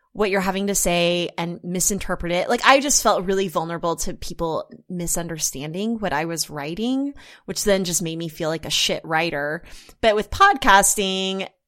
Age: 20-39